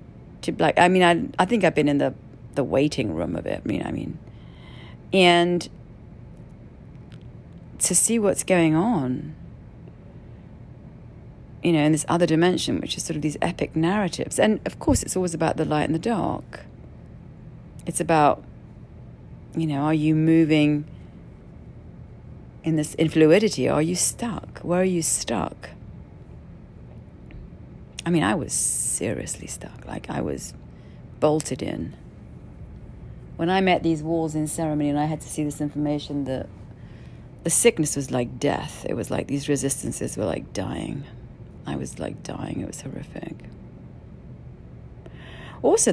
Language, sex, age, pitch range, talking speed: English, female, 40-59, 140-175 Hz, 150 wpm